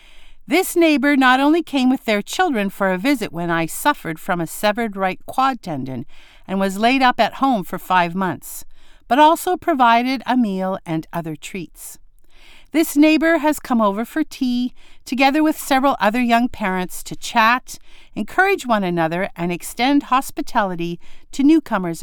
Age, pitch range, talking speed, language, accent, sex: 50-69, 195-290 Hz, 165 wpm, English, American, female